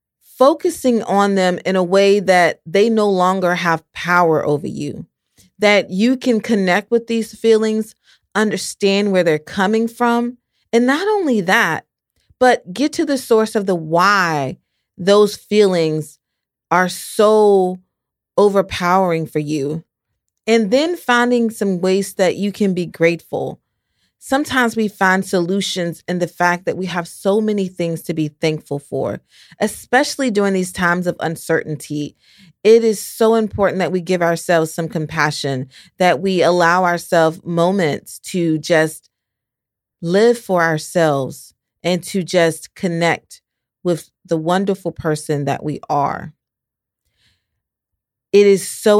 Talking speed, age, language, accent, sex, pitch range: 135 wpm, 30-49, English, American, female, 160-205 Hz